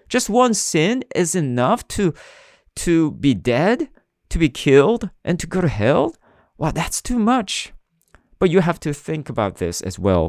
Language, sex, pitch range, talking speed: English, male, 110-160 Hz, 180 wpm